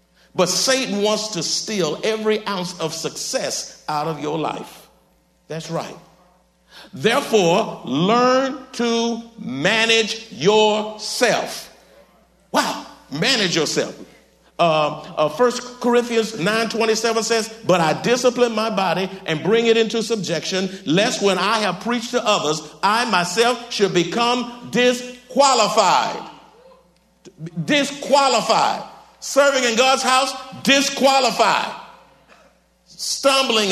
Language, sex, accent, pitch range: English, male, American, 200-255 Hz